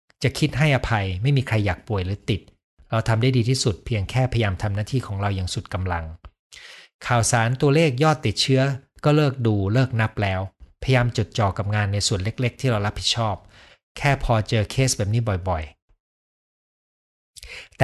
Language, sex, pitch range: Thai, male, 100-130 Hz